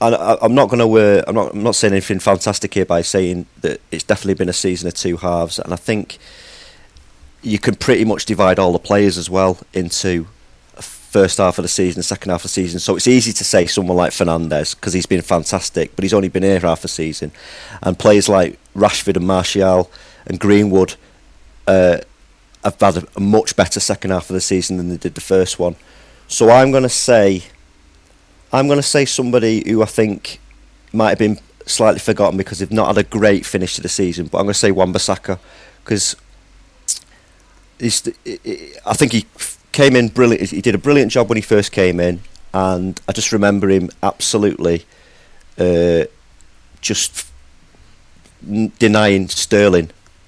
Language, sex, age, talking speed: English, male, 30-49, 185 wpm